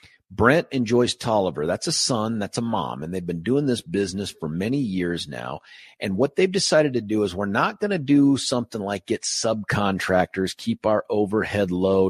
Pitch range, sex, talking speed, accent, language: 95-130 Hz, male, 200 wpm, American, English